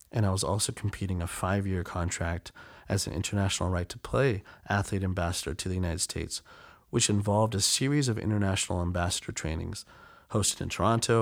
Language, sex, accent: English, male, American